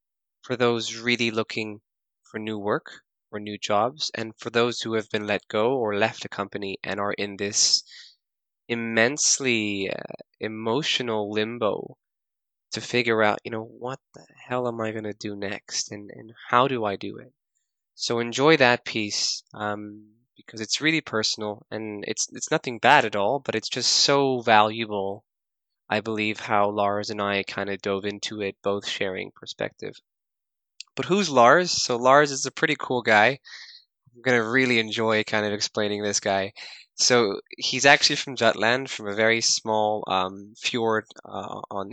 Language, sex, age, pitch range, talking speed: English, male, 20-39, 105-120 Hz, 170 wpm